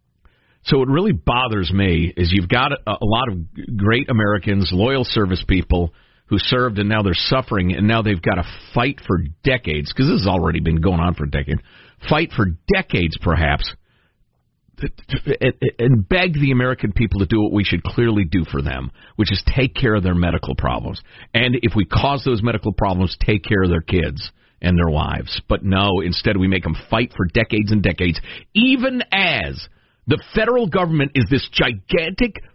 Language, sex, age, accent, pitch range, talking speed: English, male, 50-69, American, 90-140 Hz, 185 wpm